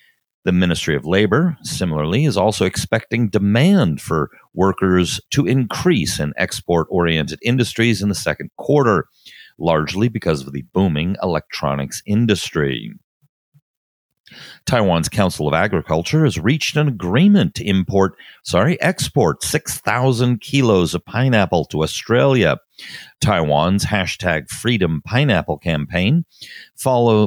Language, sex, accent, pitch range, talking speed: English, male, American, 85-125 Hz, 115 wpm